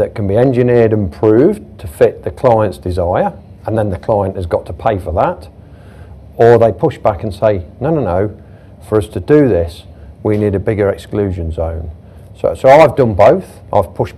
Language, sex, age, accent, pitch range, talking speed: English, male, 50-69, British, 90-120 Hz, 205 wpm